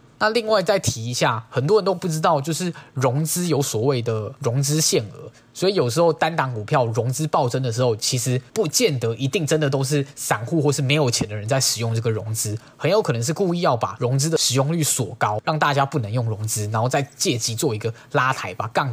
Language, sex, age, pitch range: Chinese, male, 20-39, 115-155 Hz